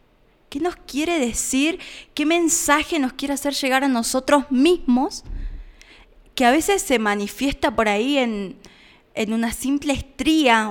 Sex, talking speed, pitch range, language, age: female, 140 wpm, 215-290 Hz, Spanish, 20-39